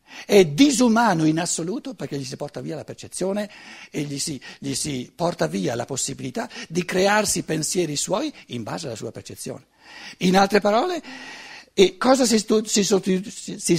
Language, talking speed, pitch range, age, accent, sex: Italian, 150 wpm, 145-230 Hz, 60-79, native, male